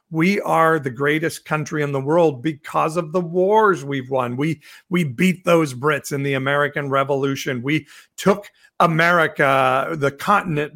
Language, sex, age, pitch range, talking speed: English, male, 50-69, 140-170 Hz, 155 wpm